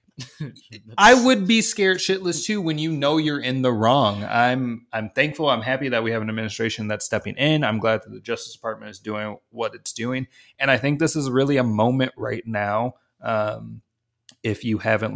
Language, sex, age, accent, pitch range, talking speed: English, male, 20-39, American, 105-125 Hz, 200 wpm